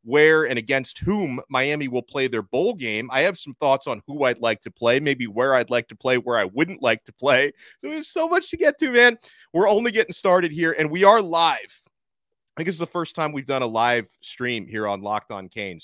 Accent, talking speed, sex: American, 250 wpm, male